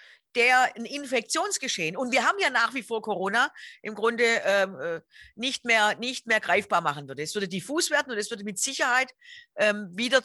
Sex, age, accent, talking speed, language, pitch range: female, 50-69, German, 180 wpm, German, 205-255 Hz